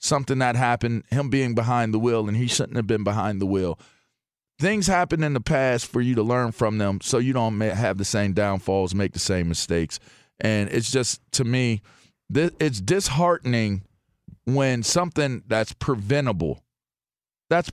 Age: 40-59